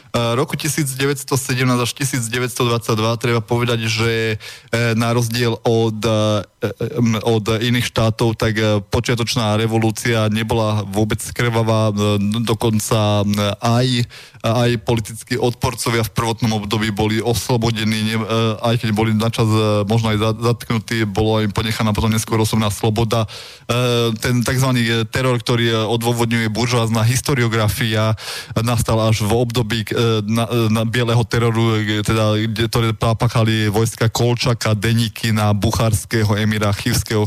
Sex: male